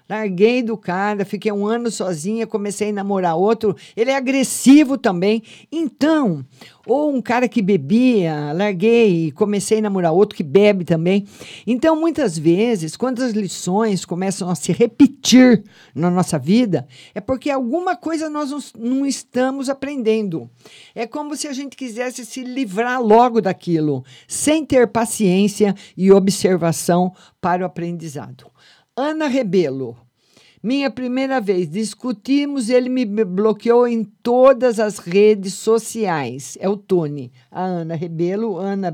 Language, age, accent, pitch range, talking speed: Portuguese, 50-69, Brazilian, 170-245 Hz, 140 wpm